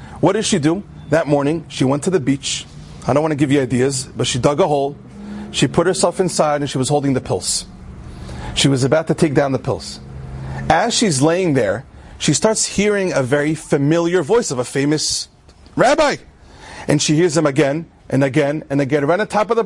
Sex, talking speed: male, 215 wpm